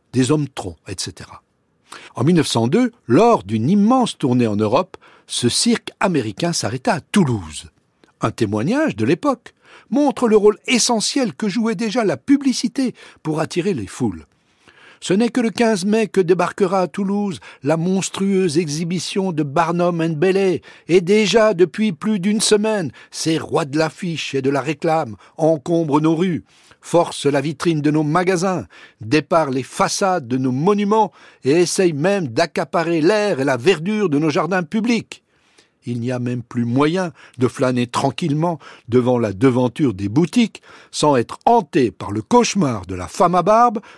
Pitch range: 125-205 Hz